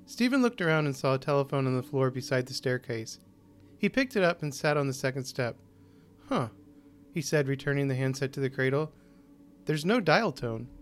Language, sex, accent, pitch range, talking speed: English, male, American, 125-170 Hz, 200 wpm